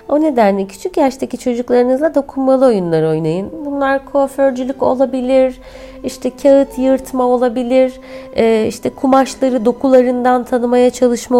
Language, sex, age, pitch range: Turkish, female, 30-49, 195-250 Hz